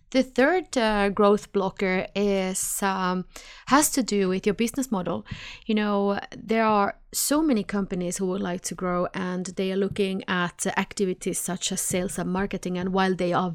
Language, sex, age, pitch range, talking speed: English, female, 30-49, 180-220 Hz, 180 wpm